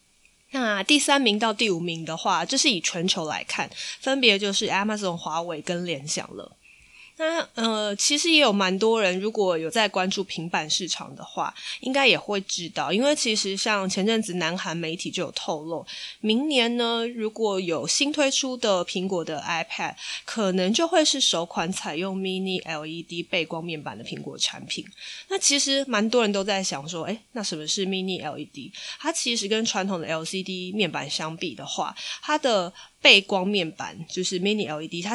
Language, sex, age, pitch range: Chinese, female, 20-39, 175-235 Hz